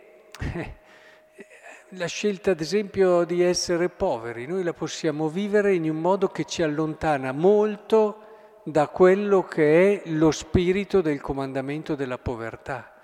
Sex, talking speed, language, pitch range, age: male, 130 wpm, Italian, 145-185 Hz, 50-69